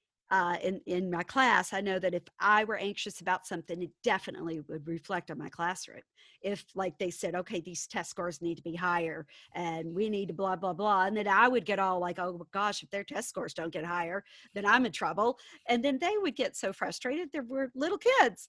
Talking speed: 235 wpm